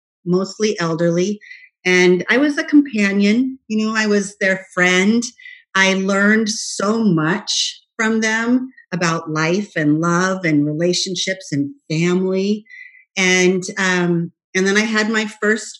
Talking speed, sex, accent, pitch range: 135 wpm, female, American, 165-205 Hz